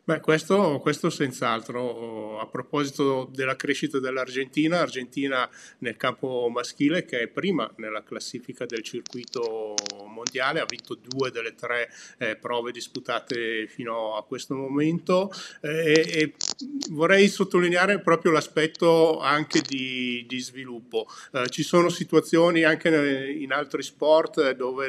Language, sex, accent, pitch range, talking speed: Italian, male, native, 125-160 Hz, 125 wpm